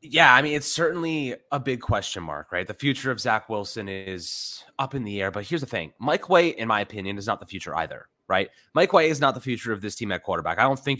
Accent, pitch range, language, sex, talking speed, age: American, 105-140 Hz, English, male, 265 wpm, 20-39